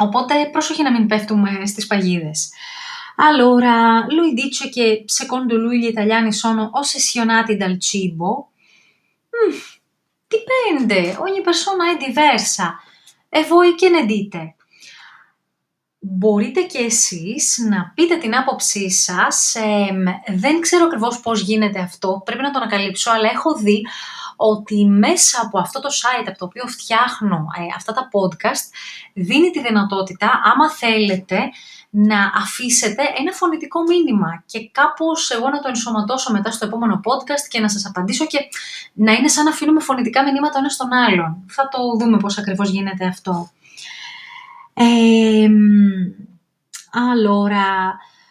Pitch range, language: 205-285 Hz, Greek